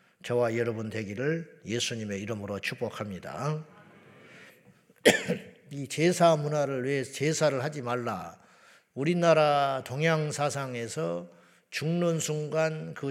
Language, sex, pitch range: Korean, male, 120-160 Hz